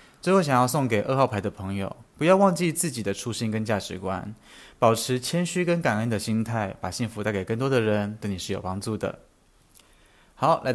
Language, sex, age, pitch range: Chinese, male, 20-39, 105-140 Hz